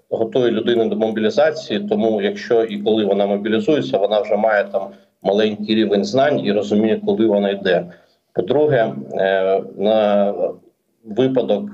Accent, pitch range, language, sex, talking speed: native, 105-115 Hz, Ukrainian, male, 130 wpm